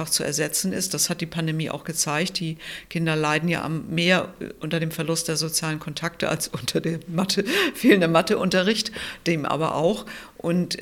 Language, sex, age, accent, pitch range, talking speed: German, female, 50-69, German, 155-175 Hz, 160 wpm